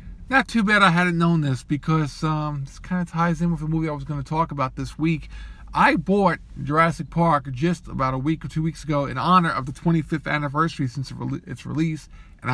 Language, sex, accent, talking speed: English, male, American, 225 wpm